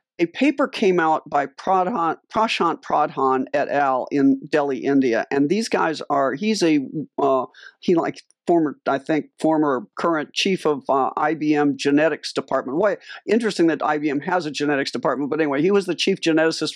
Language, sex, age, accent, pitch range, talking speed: English, male, 50-69, American, 150-200 Hz, 165 wpm